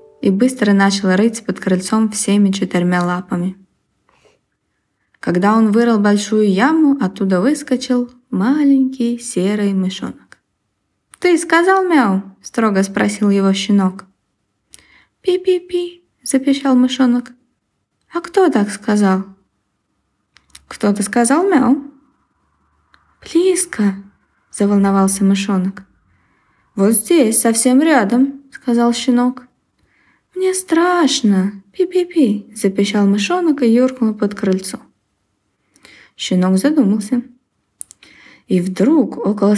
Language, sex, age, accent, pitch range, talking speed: Ukrainian, female, 20-39, native, 195-260 Hz, 95 wpm